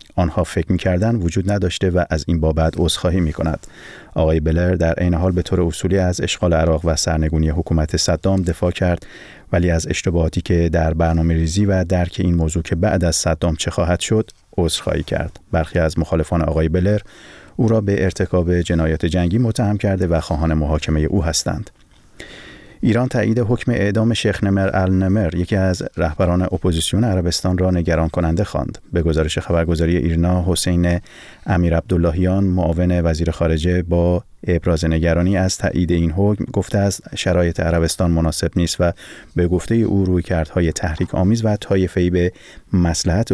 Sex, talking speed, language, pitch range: male, 165 wpm, Persian, 85-95 Hz